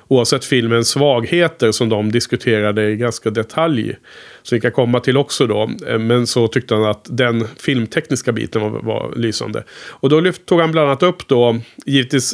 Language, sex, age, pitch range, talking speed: Swedish, male, 30-49, 115-140 Hz, 180 wpm